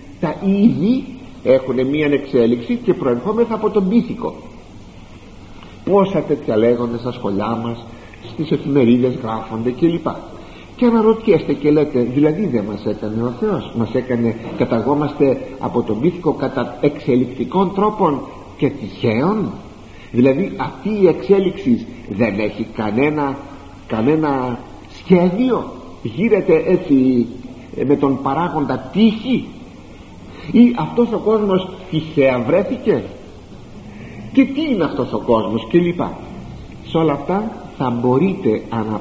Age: 60-79